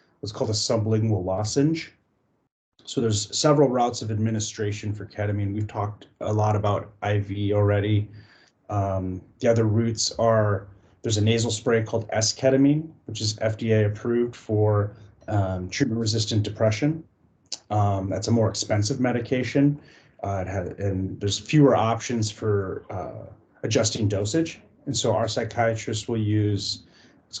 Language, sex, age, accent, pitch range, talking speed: English, male, 30-49, American, 105-120 Hz, 135 wpm